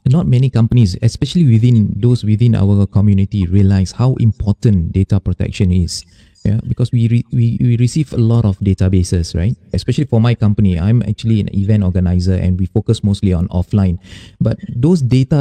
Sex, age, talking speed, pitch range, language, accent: male, 20-39, 175 wpm, 100-120 Hz, English, Malaysian